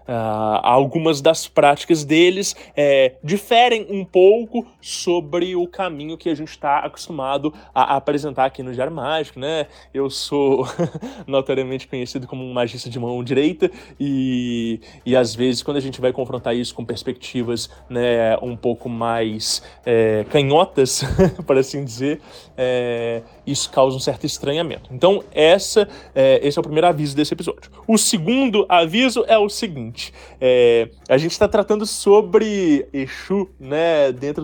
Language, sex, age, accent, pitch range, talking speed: English, male, 20-39, Brazilian, 130-180 Hz, 140 wpm